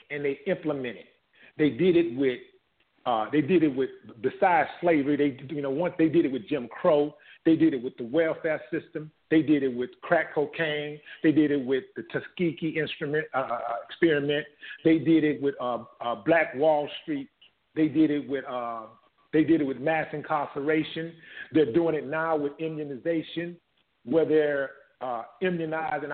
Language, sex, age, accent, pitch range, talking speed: English, male, 50-69, American, 145-170 Hz, 175 wpm